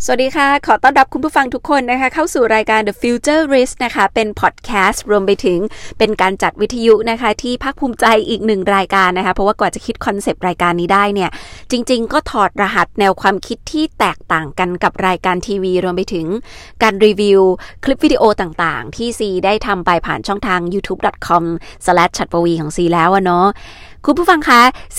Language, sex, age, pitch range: Thai, female, 20-39, 185-250 Hz